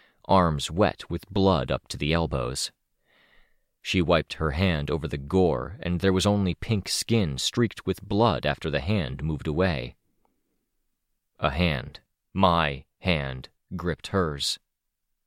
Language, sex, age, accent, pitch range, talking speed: English, male, 30-49, American, 80-110 Hz, 140 wpm